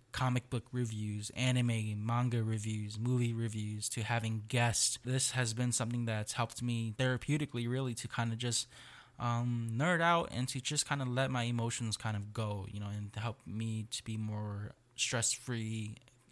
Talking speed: 175 wpm